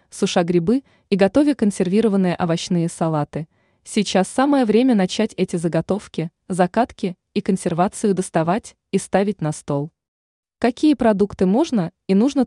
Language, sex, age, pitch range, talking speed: Russian, female, 20-39, 175-215 Hz, 125 wpm